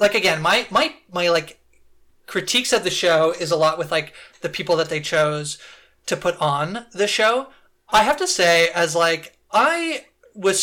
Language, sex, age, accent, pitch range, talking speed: English, male, 30-49, American, 155-185 Hz, 185 wpm